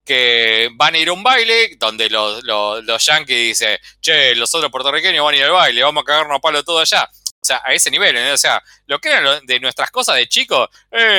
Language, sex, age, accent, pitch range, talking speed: Spanish, male, 20-39, Argentinian, 115-190 Hz, 245 wpm